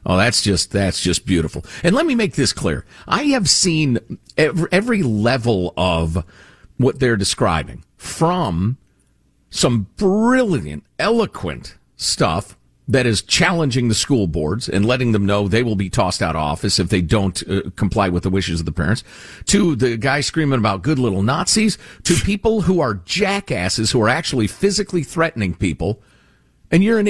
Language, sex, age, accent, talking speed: English, male, 50-69, American, 170 wpm